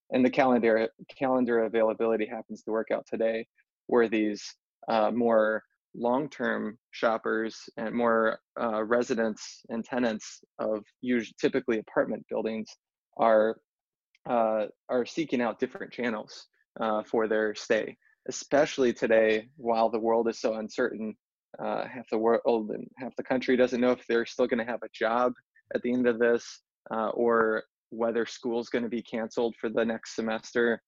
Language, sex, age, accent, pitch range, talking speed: English, male, 20-39, American, 110-120 Hz, 155 wpm